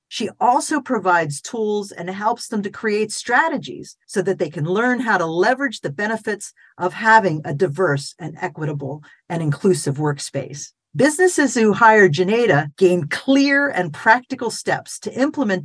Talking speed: 155 wpm